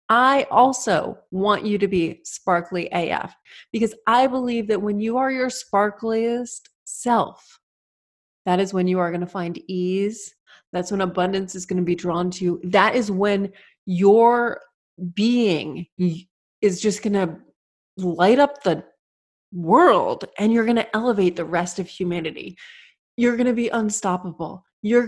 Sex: female